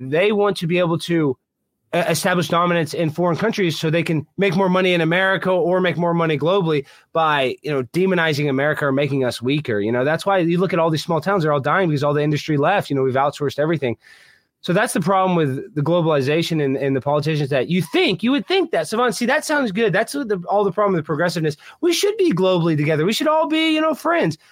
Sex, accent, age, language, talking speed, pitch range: male, American, 20-39, English, 240 wpm, 130-175 Hz